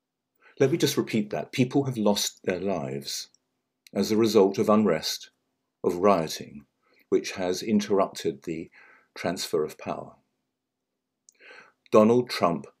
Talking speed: 120 wpm